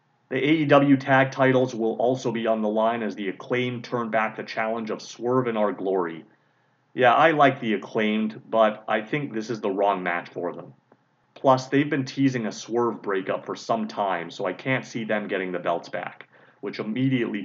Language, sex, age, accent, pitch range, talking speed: English, male, 30-49, American, 105-130 Hz, 200 wpm